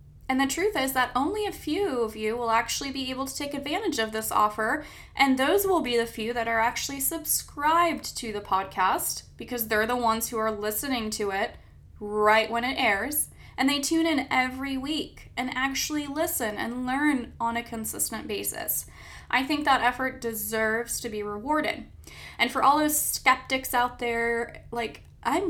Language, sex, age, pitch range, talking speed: English, female, 10-29, 215-280 Hz, 185 wpm